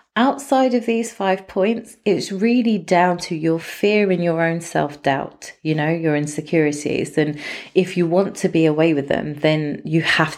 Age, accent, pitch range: 30-49, British, 155-210 Hz